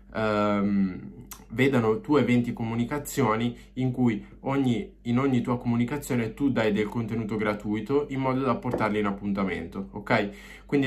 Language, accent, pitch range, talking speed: Italian, native, 105-130 Hz, 140 wpm